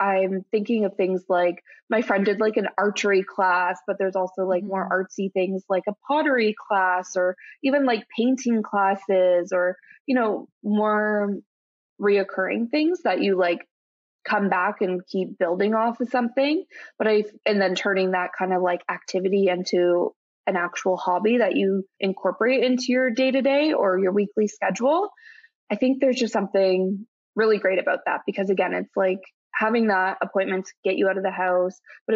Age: 20-39